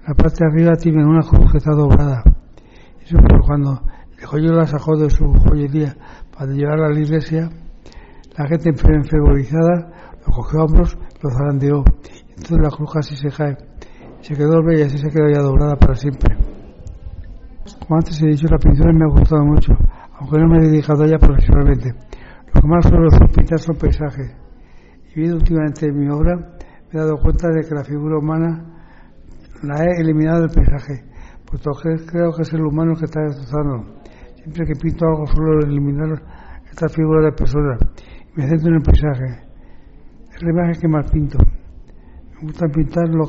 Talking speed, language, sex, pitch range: 185 wpm, Spanish, male, 135-160 Hz